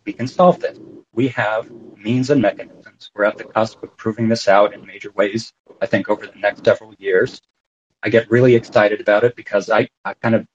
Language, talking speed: English, 215 wpm